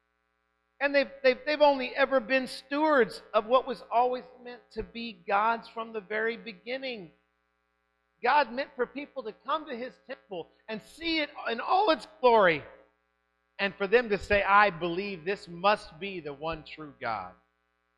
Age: 50-69